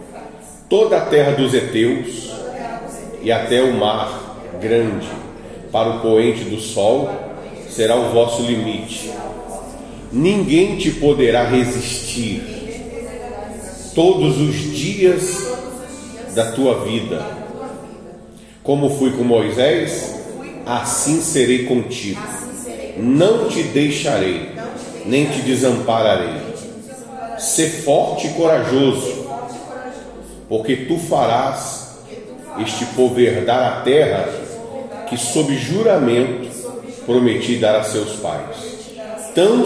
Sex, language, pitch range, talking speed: male, Portuguese, 120-180 Hz, 95 wpm